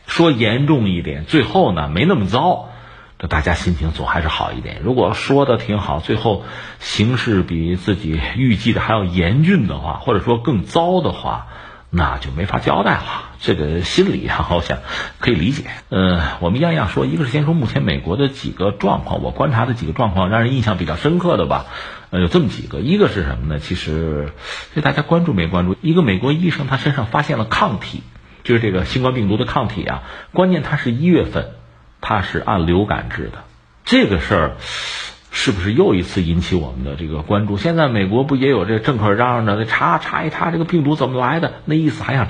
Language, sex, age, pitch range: Chinese, male, 50-69, 85-140 Hz